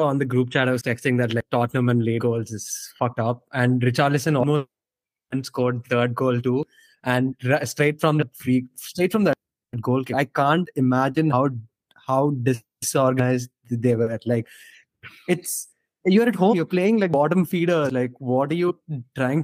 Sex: male